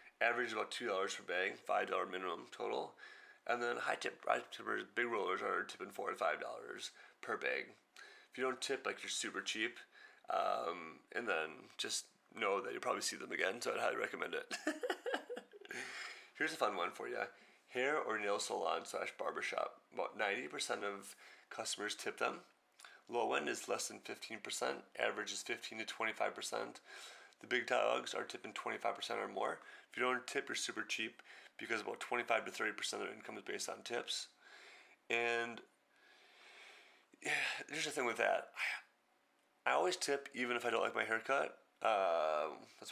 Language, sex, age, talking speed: English, male, 30-49, 170 wpm